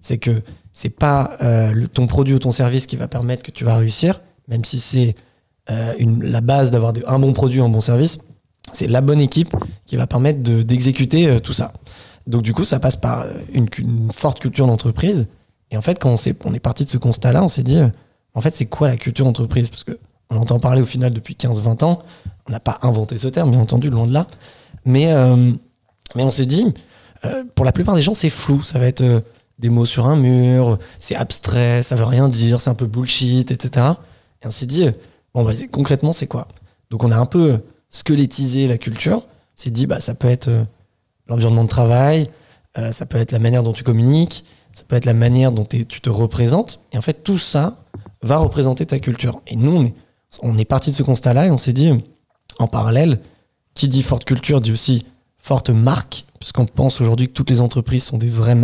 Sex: male